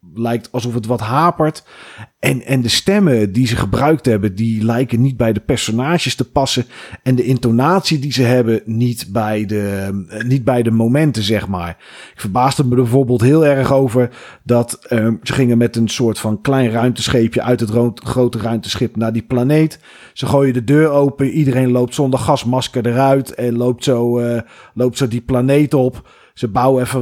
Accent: Dutch